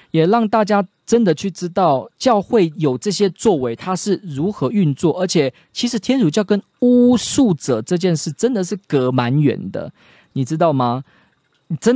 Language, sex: Chinese, male